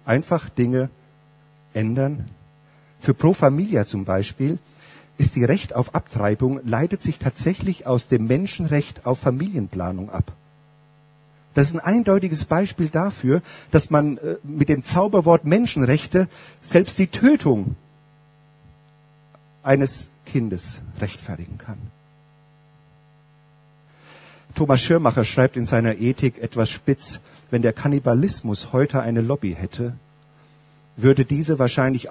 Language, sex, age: German, male, 50-69